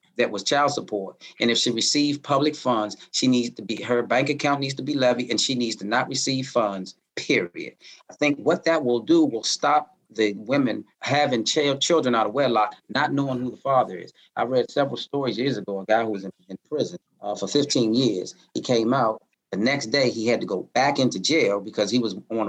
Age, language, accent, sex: 30-49, English, American, male